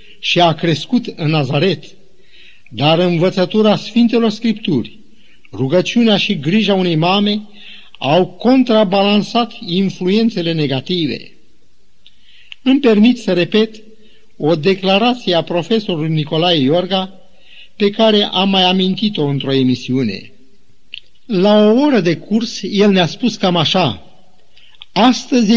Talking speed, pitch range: 110 wpm, 175-220 Hz